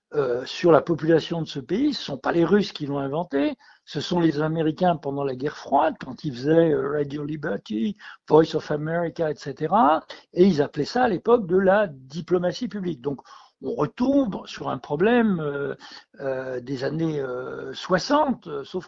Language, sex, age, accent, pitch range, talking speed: French, male, 60-79, French, 150-185 Hz, 180 wpm